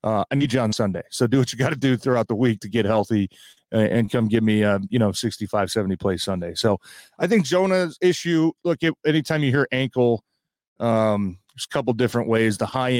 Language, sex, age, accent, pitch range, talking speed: English, male, 30-49, American, 110-135 Hz, 235 wpm